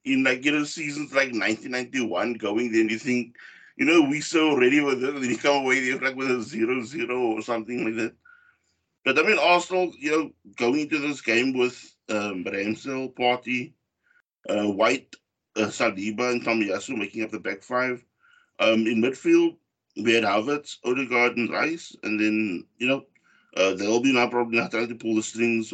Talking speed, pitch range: 190 wpm, 115-170 Hz